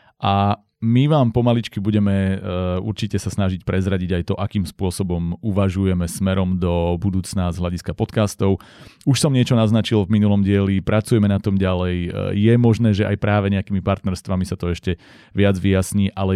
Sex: male